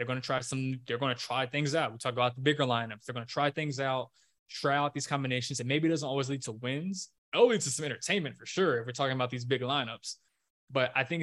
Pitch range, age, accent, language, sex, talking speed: 125-145 Hz, 20-39, American, English, male, 280 wpm